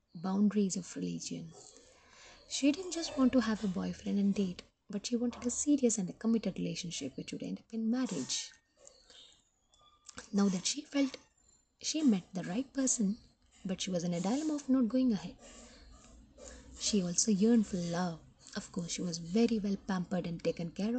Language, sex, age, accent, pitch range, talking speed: Hindi, female, 20-39, native, 180-240 Hz, 175 wpm